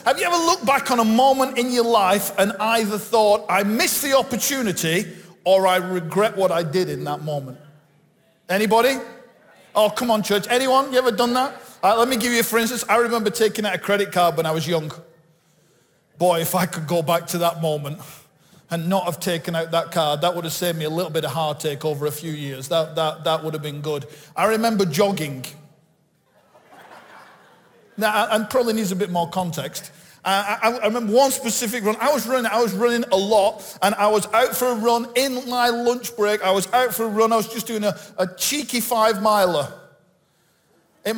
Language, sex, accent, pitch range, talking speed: English, male, British, 175-235 Hz, 210 wpm